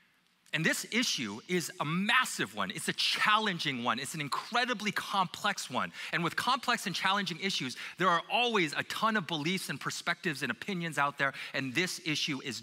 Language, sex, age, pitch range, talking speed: English, male, 30-49, 140-190 Hz, 185 wpm